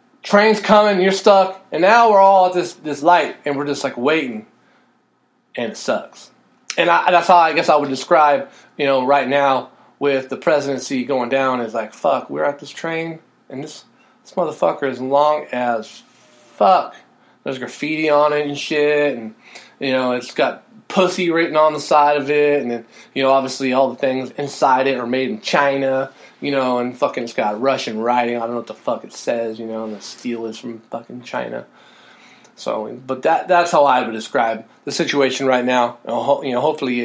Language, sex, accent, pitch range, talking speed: English, male, American, 125-155 Hz, 200 wpm